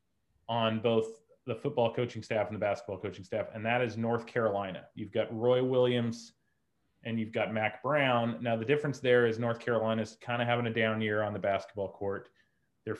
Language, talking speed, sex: English, 205 wpm, male